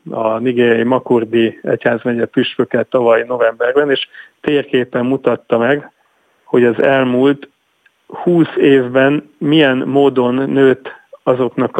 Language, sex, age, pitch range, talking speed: Hungarian, male, 40-59, 115-135 Hz, 105 wpm